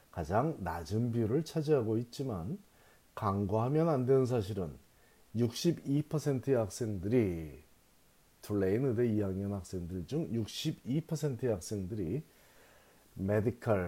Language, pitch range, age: Korean, 100-135 Hz, 40-59